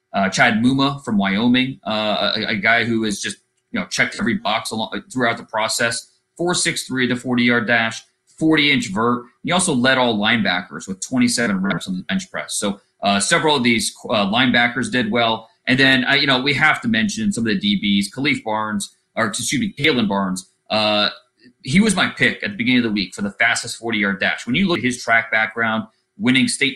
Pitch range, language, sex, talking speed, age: 110-150 Hz, English, male, 220 wpm, 30-49